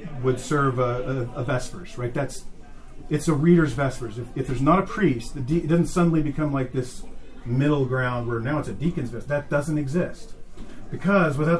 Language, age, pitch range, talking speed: English, 40-59, 125-150 Hz, 185 wpm